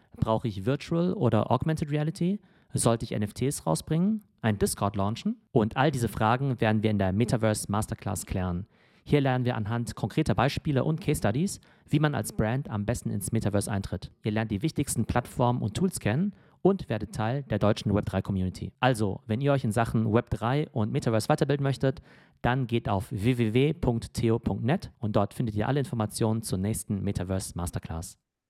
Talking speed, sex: 170 wpm, male